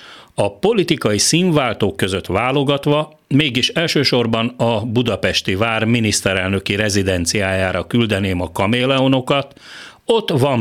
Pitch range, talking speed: 105-135 Hz, 95 wpm